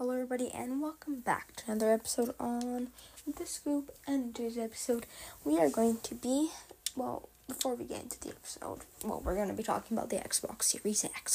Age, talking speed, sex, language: 10-29, 205 wpm, female, English